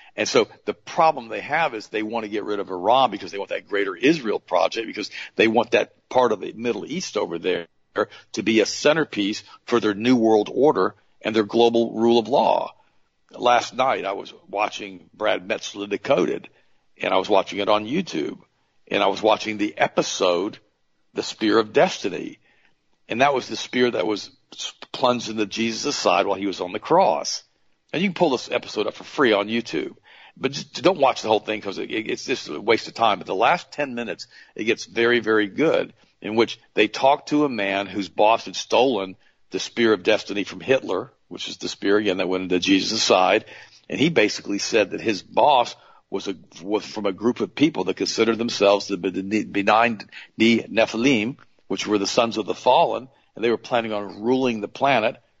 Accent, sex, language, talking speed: American, male, English, 200 wpm